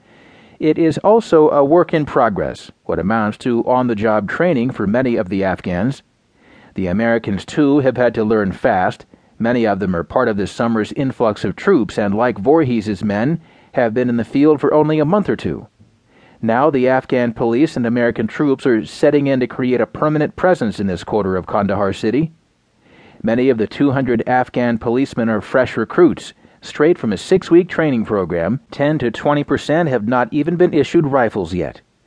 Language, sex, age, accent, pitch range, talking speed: English, male, 40-59, American, 115-155 Hz, 185 wpm